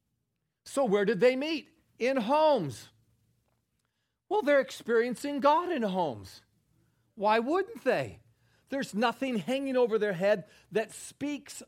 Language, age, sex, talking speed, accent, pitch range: English, 40-59, male, 125 wpm, American, 195-275 Hz